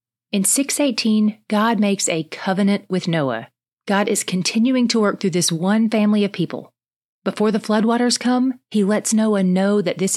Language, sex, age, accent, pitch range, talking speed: English, female, 30-49, American, 175-230 Hz, 170 wpm